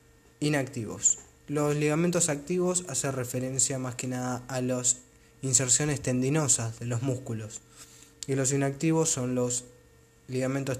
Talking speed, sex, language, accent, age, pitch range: 120 wpm, male, Spanish, Argentinian, 20-39, 125-150 Hz